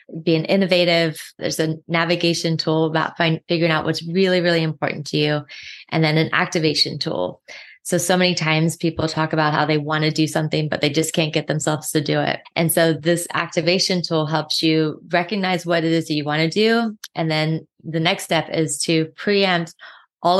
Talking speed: 195 wpm